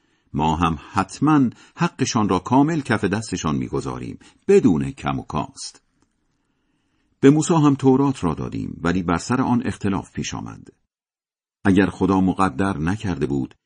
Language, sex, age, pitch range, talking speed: Persian, male, 50-69, 85-130 Hz, 135 wpm